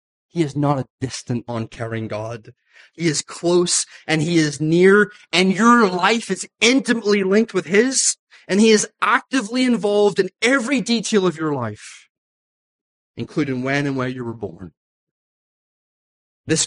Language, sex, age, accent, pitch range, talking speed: English, male, 30-49, American, 130-190 Hz, 150 wpm